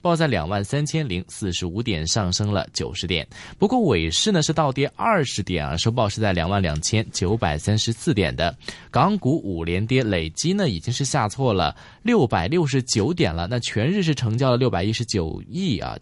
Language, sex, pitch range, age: Chinese, male, 100-160 Hz, 20-39